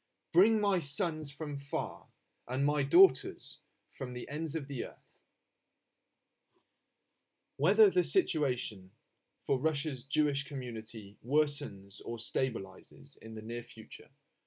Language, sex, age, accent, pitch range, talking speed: English, male, 30-49, British, 115-155 Hz, 115 wpm